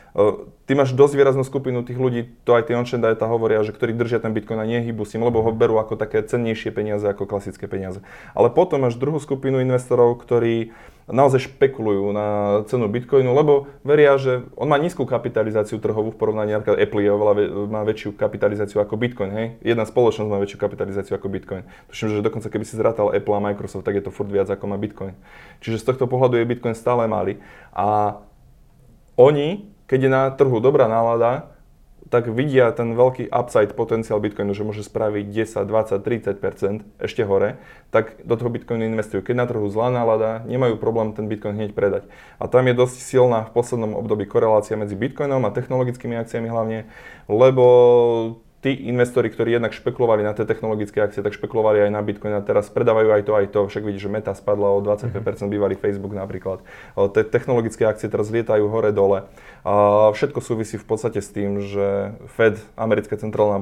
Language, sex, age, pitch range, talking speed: Slovak, male, 20-39, 105-120 Hz, 185 wpm